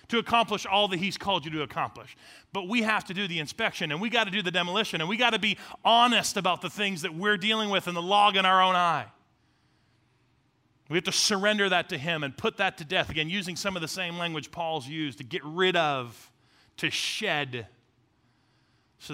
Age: 30-49